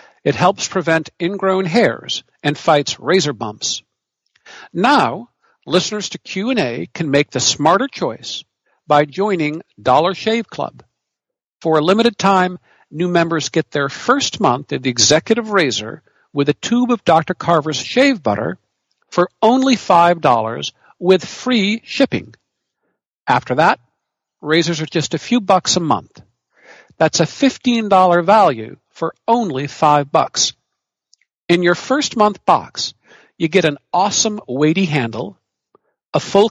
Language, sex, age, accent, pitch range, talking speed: English, male, 60-79, American, 150-210 Hz, 135 wpm